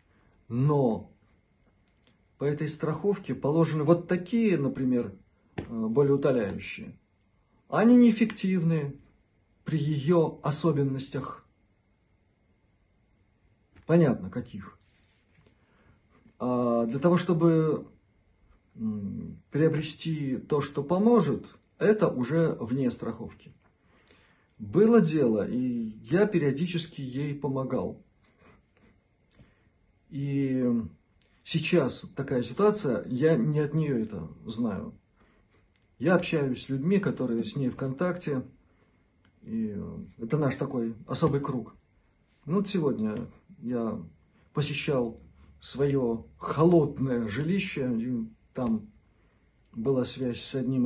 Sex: male